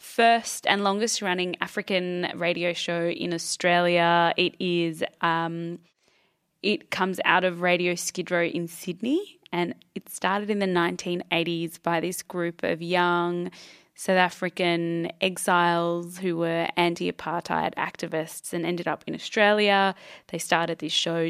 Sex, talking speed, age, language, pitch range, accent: female, 135 wpm, 20-39, English, 170-185 Hz, Australian